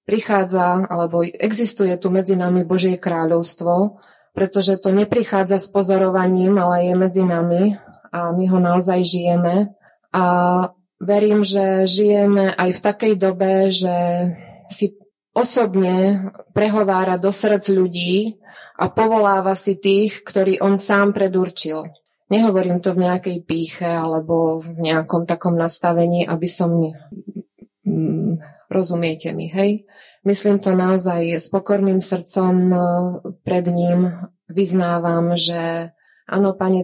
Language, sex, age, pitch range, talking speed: Slovak, female, 20-39, 175-200 Hz, 120 wpm